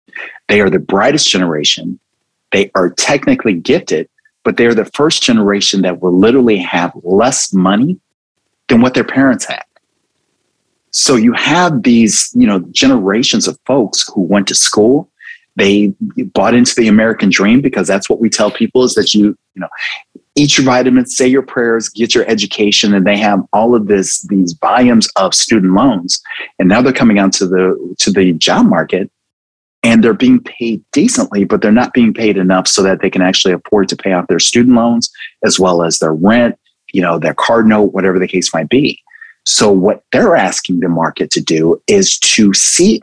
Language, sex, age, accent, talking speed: English, male, 30-49, American, 190 wpm